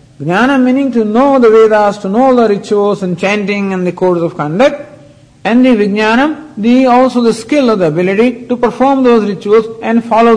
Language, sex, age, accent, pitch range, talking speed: English, male, 50-69, Indian, 145-230 Hz, 190 wpm